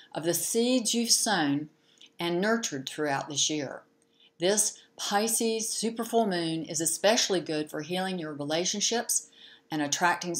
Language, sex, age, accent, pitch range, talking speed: English, female, 60-79, American, 155-195 Hz, 140 wpm